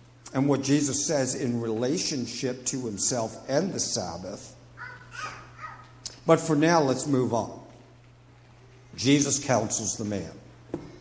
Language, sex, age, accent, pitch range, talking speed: English, male, 50-69, American, 120-140 Hz, 115 wpm